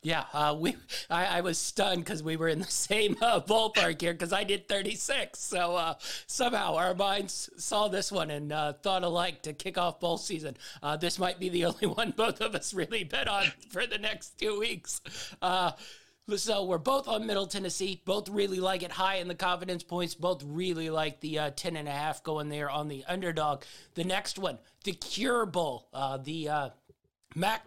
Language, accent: English, American